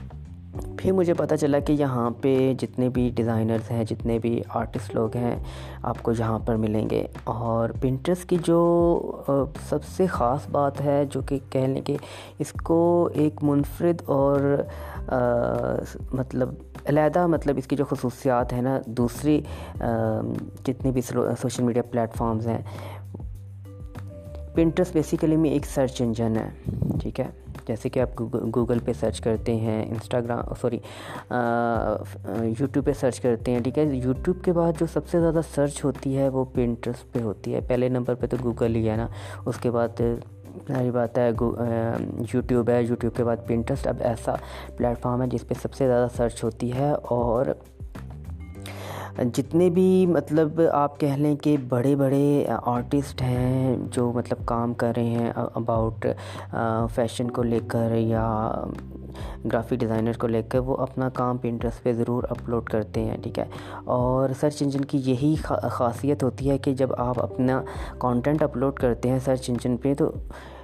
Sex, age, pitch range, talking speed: female, 20-39, 115-135 Hz, 165 wpm